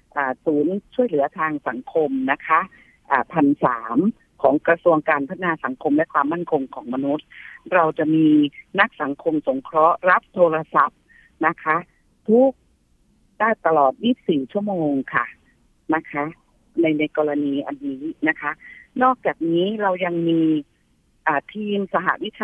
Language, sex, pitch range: Thai, female, 155-210 Hz